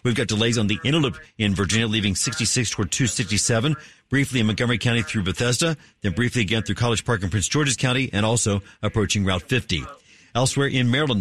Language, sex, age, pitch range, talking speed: English, male, 50-69, 105-125 Hz, 195 wpm